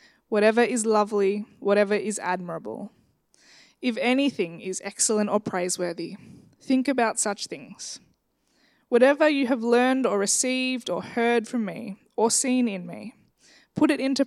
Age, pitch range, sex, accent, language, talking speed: 20-39, 195-245 Hz, female, Australian, English, 140 wpm